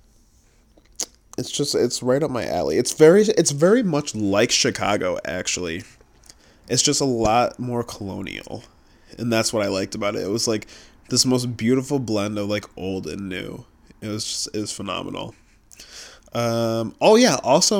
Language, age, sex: English, 20-39, male